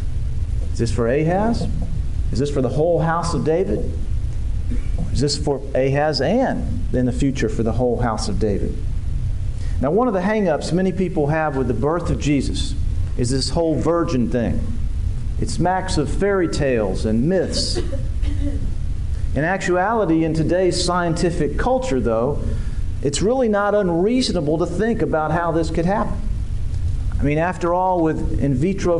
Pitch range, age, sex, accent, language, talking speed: 100-170 Hz, 40-59, male, American, English, 155 wpm